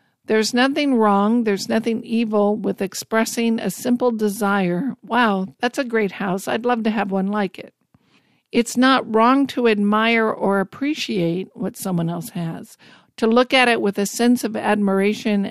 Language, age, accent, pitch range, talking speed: English, 50-69, American, 200-240 Hz, 165 wpm